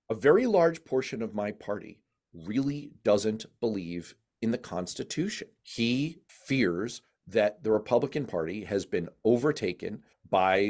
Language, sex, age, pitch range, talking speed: English, male, 40-59, 105-130 Hz, 130 wpm